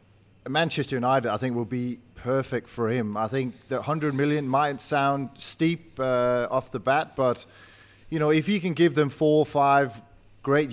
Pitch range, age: 115-145 Hz, 20-39